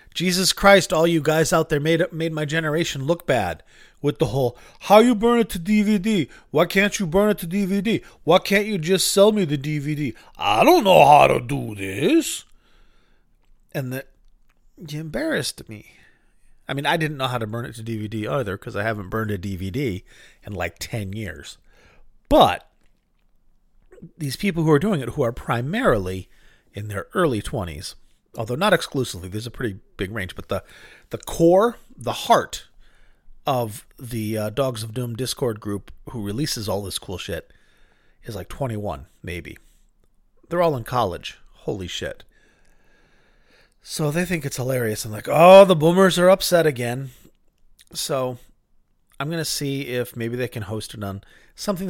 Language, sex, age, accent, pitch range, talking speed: English, male, 40-59, American, 110-170 Hz, 175 wpm